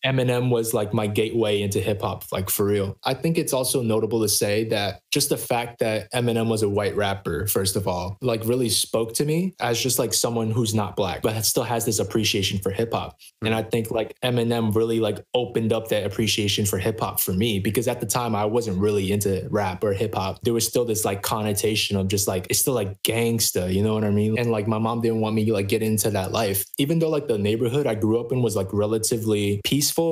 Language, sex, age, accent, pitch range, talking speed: English, male, 20-39, American, 105-120 Hz, 245 wpm